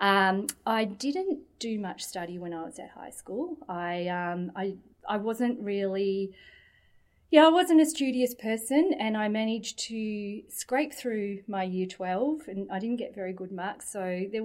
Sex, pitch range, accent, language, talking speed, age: female, 185-230 Hz, Australian, English, 175 wpm, 30-49